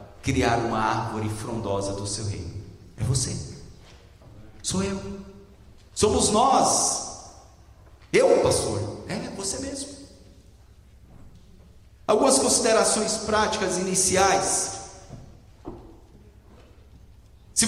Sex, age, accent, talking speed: male, 40-59, Brazilian, 80 wpm